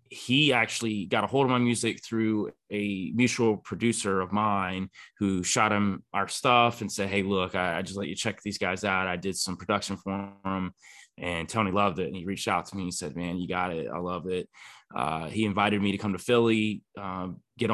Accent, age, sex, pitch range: American, 20-39, male, 95-110 Hz